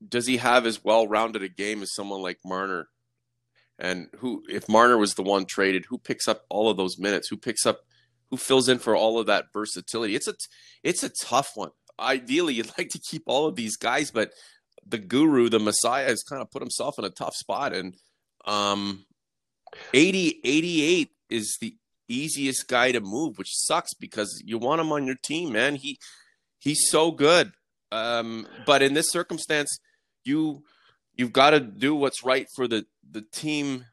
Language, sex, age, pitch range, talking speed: English, male, 30-49, 105-145 Hz, 185 wpm